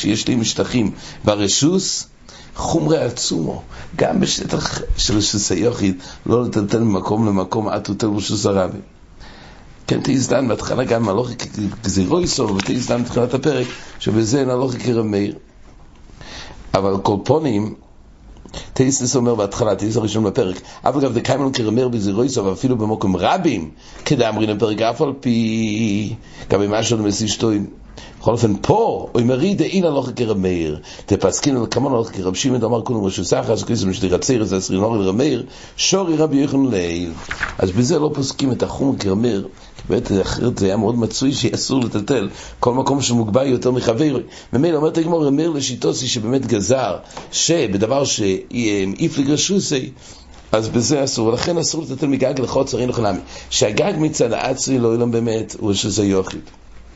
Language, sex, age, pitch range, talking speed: English, male, 60-79, 100-130 Hz, 100 wpm